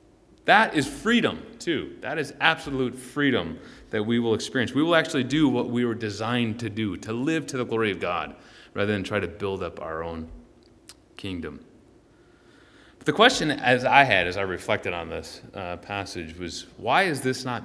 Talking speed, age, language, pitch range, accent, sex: 185 wpm, 30-49, English, 105-155 Hz, American, male